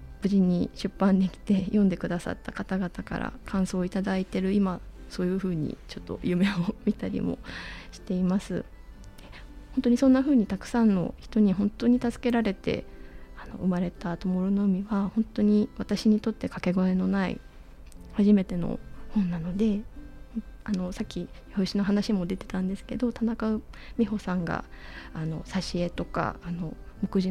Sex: female